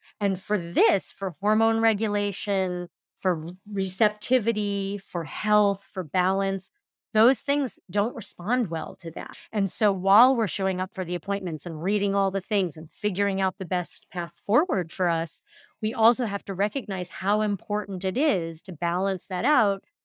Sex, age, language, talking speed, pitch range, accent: female, 30-49, English, 165 wpm, 180-215 Hz, American